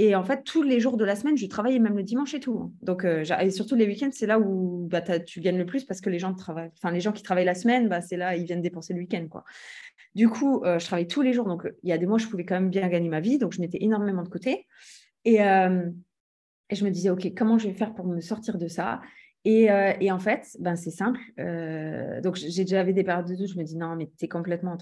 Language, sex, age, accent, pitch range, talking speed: French, female, 20-39, French, 185-245 Hz, 290 wpm